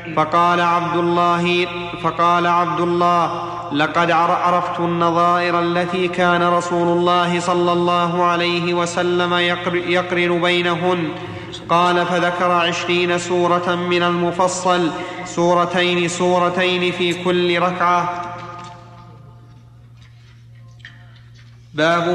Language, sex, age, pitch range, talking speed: Arabic, male, 30-49, 175-185 Hz, 85 wpm